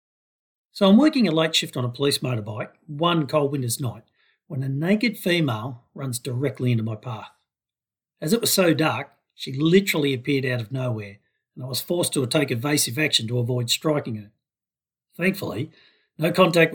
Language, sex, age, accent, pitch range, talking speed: English, male, 50-69, Australian, 125-165 Hz, 175 wpm